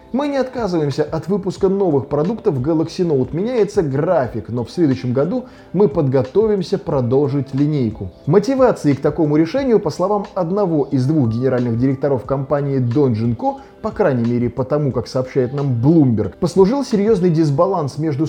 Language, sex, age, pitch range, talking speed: Russian, male, 20-39, 130-185 Hz, 150 wpm